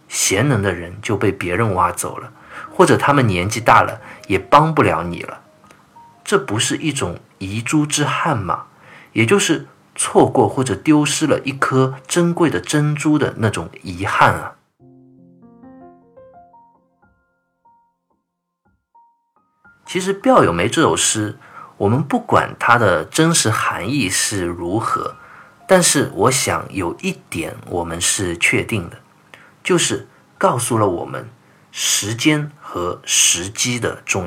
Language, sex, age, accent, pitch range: Chinese, male, 50-69, native, 100-155 Hz